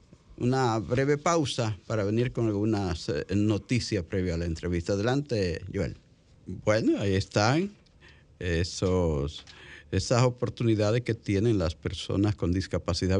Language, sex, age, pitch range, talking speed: Spanish, male, 50-69, 95-120 Hz, 115 wpm